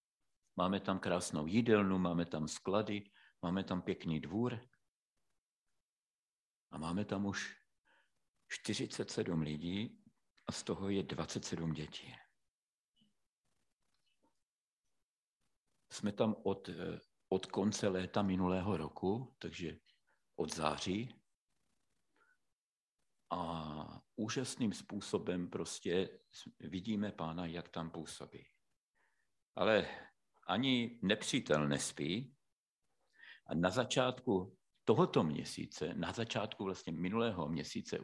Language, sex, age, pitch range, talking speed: Slovak, male, 50-69, 85-105 Hz, 90 wpm